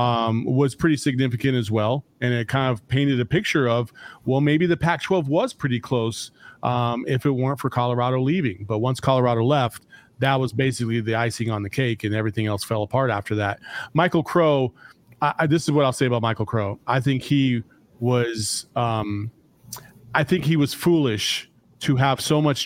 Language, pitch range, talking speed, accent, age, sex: English, 125-150 Hz, 195 wpm, American, 40-59, male